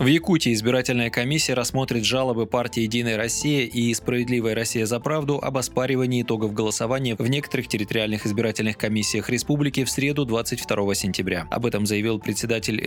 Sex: male